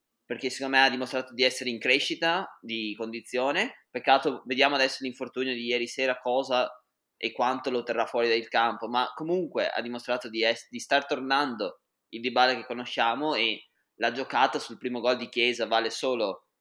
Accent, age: native, 20-39